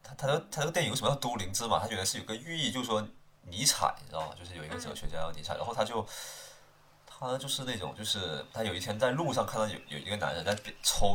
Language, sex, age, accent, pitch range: Chinese, male, 20-39, native, 80-100 Hz